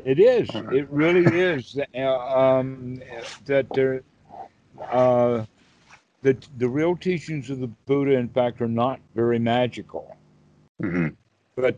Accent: American